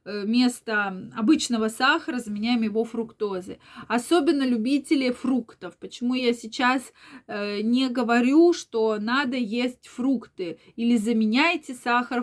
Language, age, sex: Russian, 20-39, female